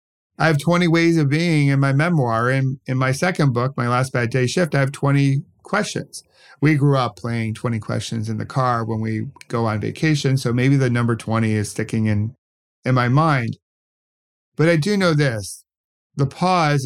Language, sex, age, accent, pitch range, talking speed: English, male, 50-69, American, 115-150 Hz, 195 wpm